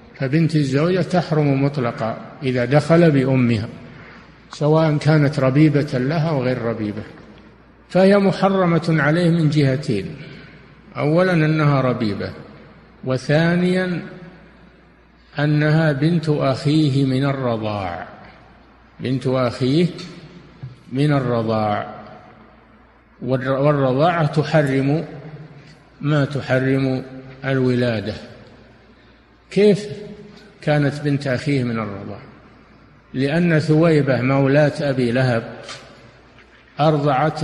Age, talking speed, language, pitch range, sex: 50-69, 80 wpm, Arabic, 125-160 Hz, male